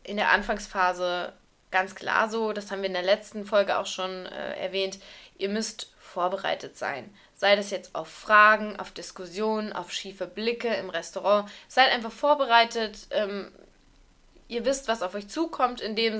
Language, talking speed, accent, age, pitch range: German, 165 wpm, German, 20-39, 195-225 Hz